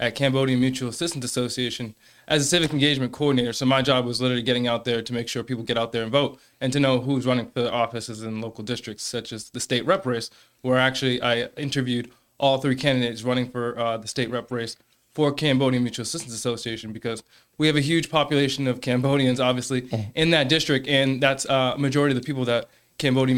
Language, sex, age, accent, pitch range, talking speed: English, male, 20-39, American, 120-140 Hz, 215 wpm